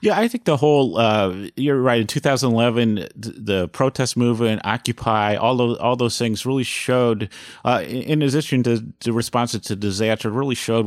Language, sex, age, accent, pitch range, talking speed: English, male, 40-59, American, 110-135 Hz, 190 wpm